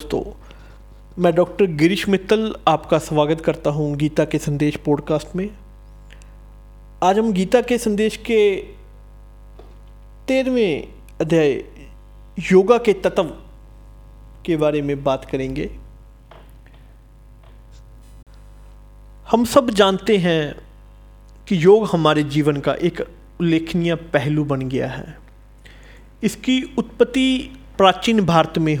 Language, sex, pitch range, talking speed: Hindi, male, 140-205 Hz, 105 wpm